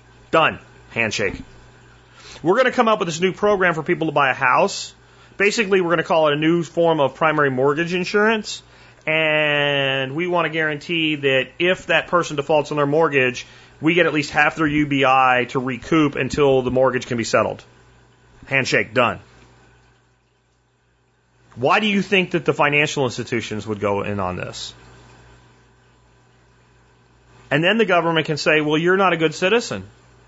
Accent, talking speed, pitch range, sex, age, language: American, 170 wpm, 130-170 Hz, male, 30-49, English